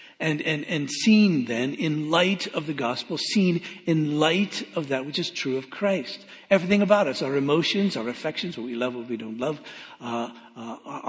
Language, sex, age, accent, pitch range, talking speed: English, male, 60-79, American, 135-170 Hz, 195 wpm